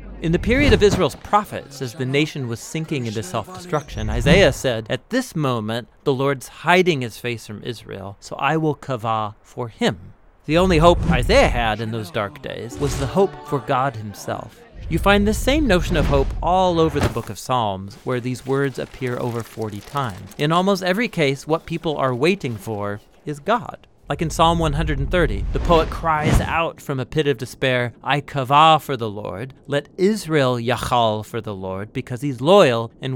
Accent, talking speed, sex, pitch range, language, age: American, 190 wpm, male, 120-170 Hz, English, 40-59